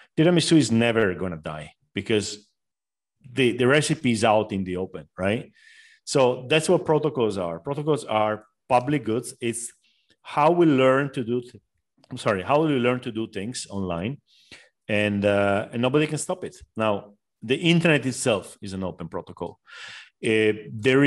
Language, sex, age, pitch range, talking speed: English, male, 40-59, 100-140 Hz, 165 wpm